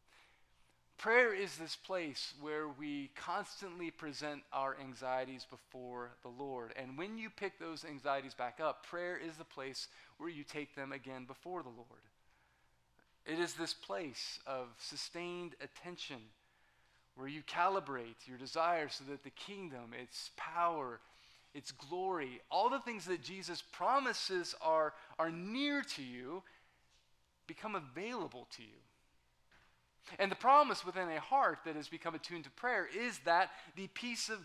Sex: male